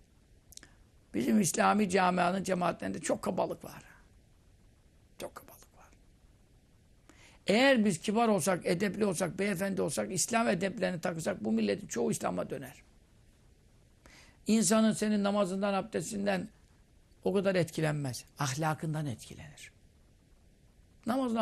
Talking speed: 100 wpm